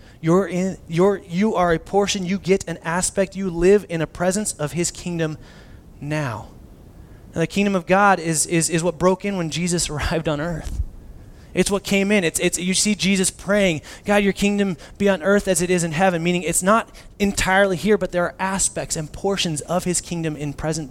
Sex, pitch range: male, 140-185 Hz